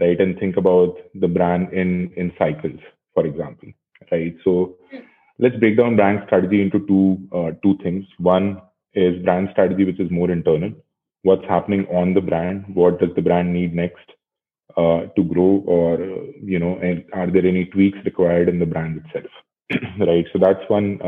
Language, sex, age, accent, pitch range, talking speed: English, male, 30-49, Indian, 85-95 Hz, 175 wpm